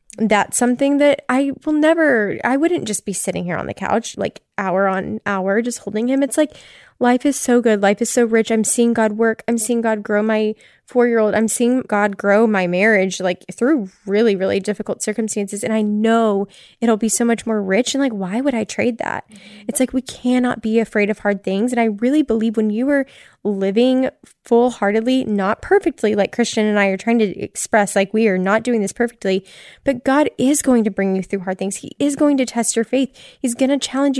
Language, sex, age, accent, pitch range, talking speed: English, female, 10-29, American, 205-250 Hz, 225 wpm